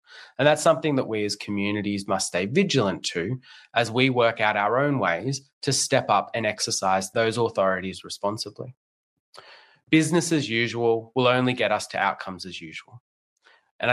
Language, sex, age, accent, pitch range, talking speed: English, male, 20-39, Australian, 100-130 Hz, 165 wpm